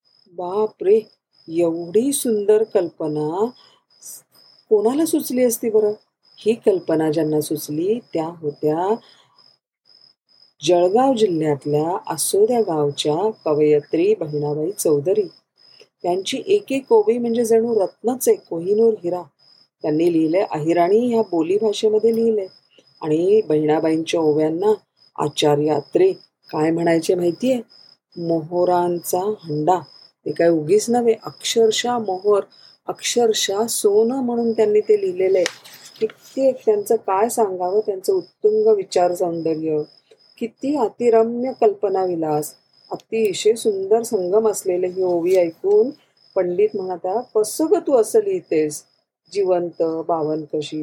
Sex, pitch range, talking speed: female, 165-240 Hz, 105 wpm